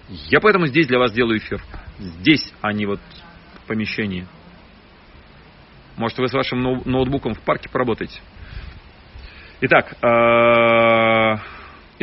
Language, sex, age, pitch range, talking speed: Russian, male, 40-59, 105-135 Hz, 125 wpm